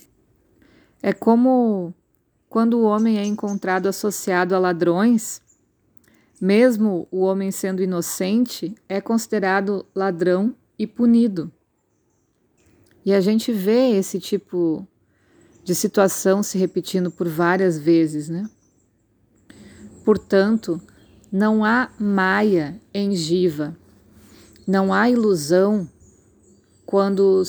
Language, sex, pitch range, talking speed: Portuguese, female, 170-205 Hz, 95 wpm